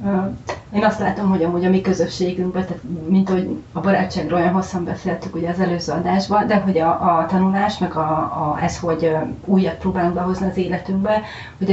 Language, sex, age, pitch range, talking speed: Hungarian, female, 30-49, 170-205 Hz, 180 wpm